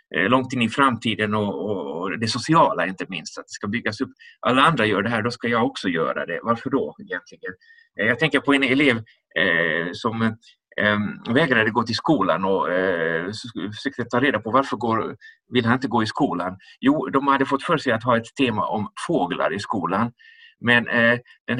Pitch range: 115-145 Hz